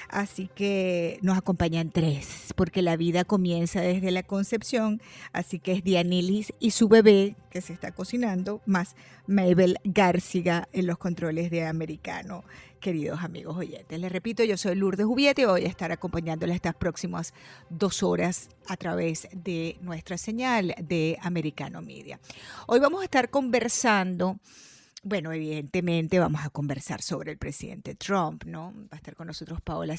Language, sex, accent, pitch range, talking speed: Spanish, female, American, 165-190 Hz, 155 wpm